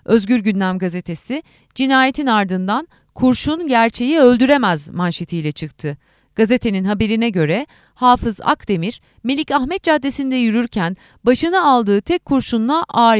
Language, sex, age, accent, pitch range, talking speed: Turkish, female, 30-49, native, 190-270 Hz, 110 wpm